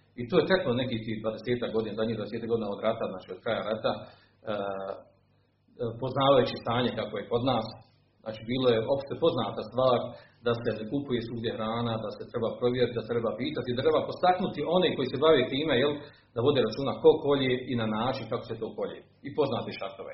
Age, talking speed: 40-59, 195 wpm